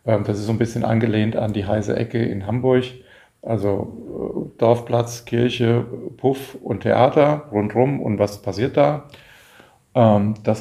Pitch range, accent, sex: 105-125 Hz, German, male